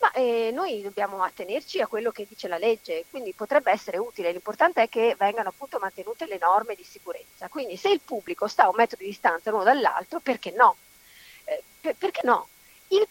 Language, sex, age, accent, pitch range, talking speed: Italian, female, 40-59, native, 205-285 Hz, 195 wpm